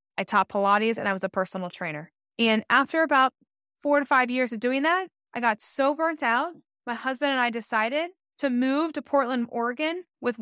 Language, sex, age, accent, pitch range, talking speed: English, female, 10-29, American, 205-270 Hz, 200 wpm